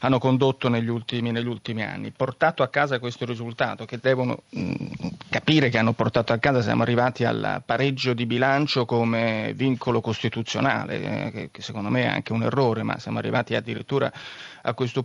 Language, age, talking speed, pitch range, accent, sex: Italian, 30-49, 170 wpm, 120-145 Hz, native, male